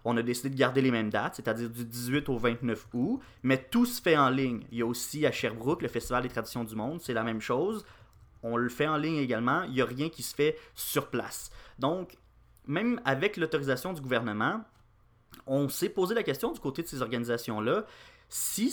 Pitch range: 120-145 Hz